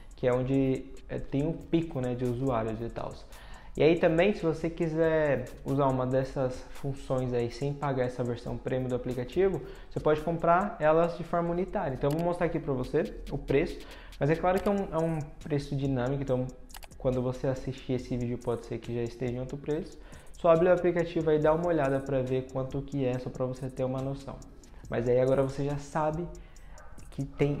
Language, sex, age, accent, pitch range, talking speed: Portuguese, male, 20-39, Brazilian, 125-155 Hz, 210 wpm